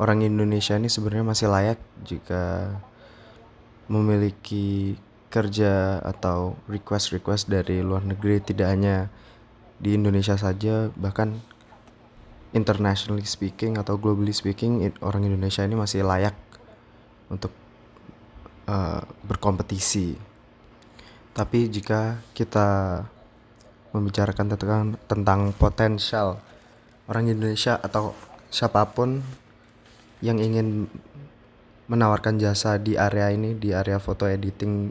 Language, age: Indonesian, 20-39